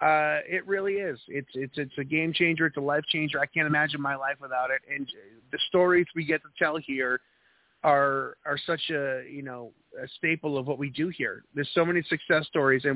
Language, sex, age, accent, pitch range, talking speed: English, male, 30-49, American, 140-165 Hz, 220 wpm